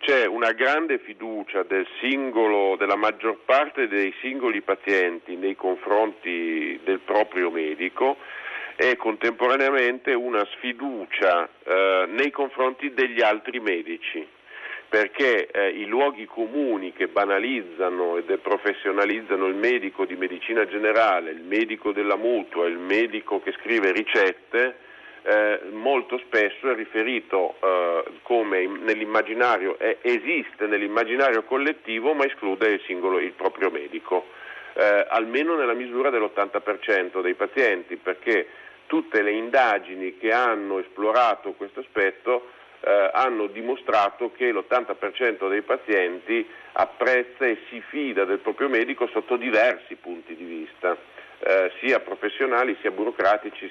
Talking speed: 120 wpm